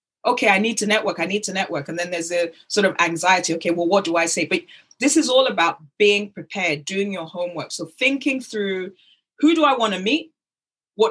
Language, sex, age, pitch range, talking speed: English, female, 20-39, 185-260 Hz, 225 wpm